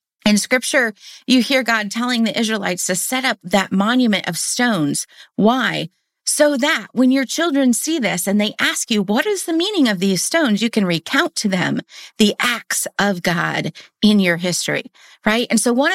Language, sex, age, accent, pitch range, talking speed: English, female, 30-49, American, 200-260 Hz, 190 wpm